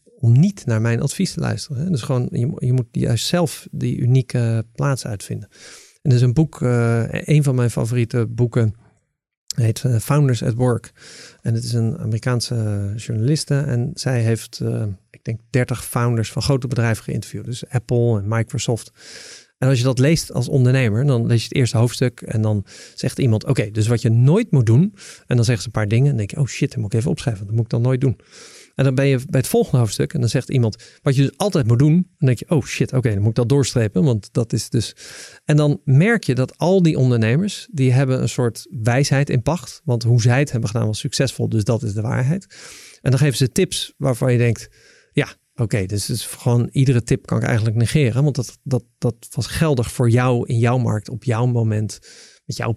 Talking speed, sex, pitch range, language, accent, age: 230 wpm, male, 115-140 Hz, Dutch, Dutch, 50-69